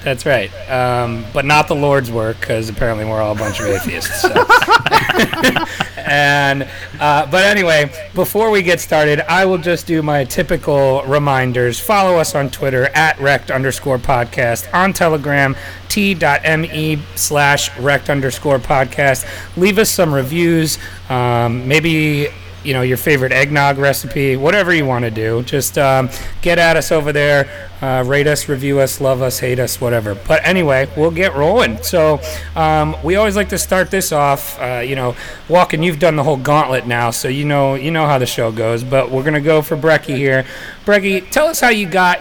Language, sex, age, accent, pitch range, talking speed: English, male, 30-49, American, 125-155 Hz, 180 wpm